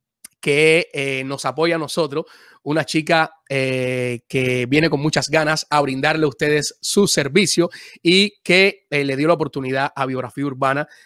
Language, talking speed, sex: Spanish, 165 wpm, male